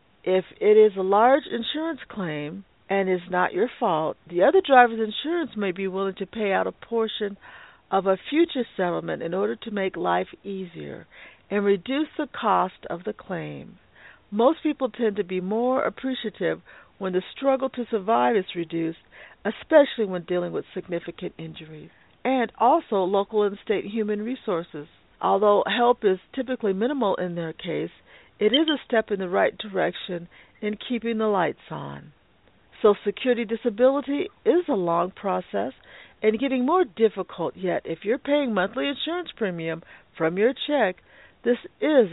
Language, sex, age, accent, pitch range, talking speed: English, female, 50-69, American, 185-250 Hz, 160 wpm